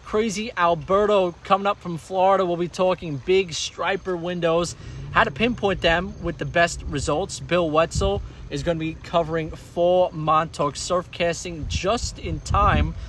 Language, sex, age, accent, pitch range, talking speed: English, male, 20-39, American, 140-180 Hz, 150 wpm